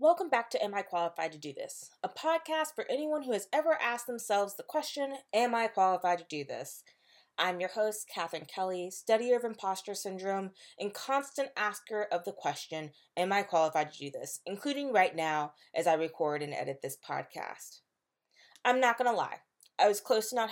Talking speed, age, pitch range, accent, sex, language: 195 wpm, 20-39, 160-220 Hz, American, female, English